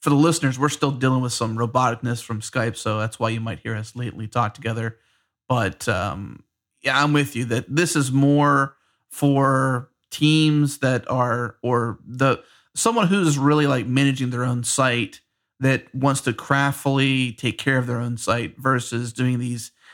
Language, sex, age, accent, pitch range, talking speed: English, male, 30-49, American, 120-140 Hz, 175 wpm